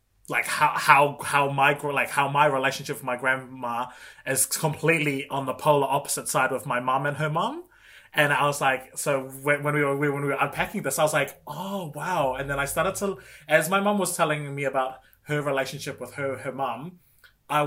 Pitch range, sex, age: 130-155 Hz, male, 20-39